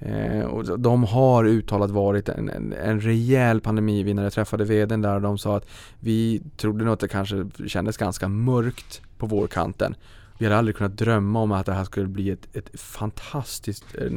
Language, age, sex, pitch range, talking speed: Swedish, 20-39, male, 100-115 Hz, 180 wpm